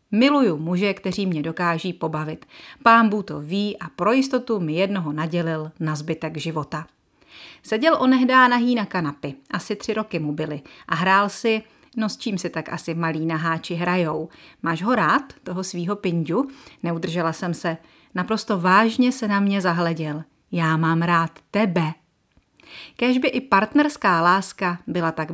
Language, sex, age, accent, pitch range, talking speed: Czech, female, 40-59, native, 165-225 Hz, 155 wpm